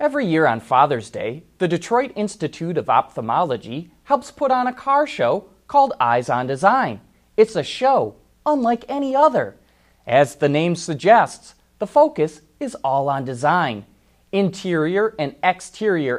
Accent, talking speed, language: American, 145 wpm, English